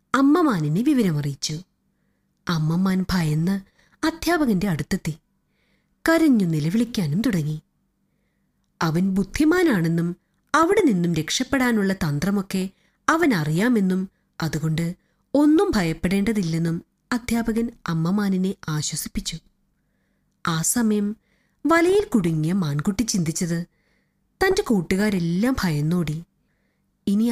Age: 30-49